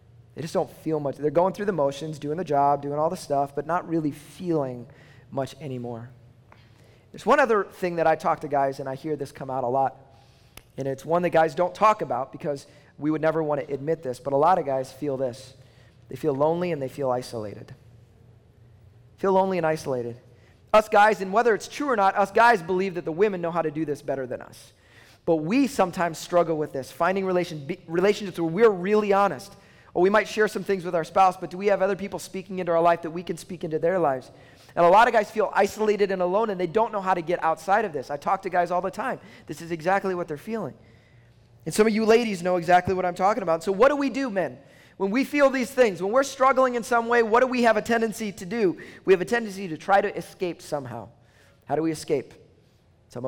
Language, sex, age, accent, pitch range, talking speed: English, male, 30-49, American, 135-195 Hz, 245 wpm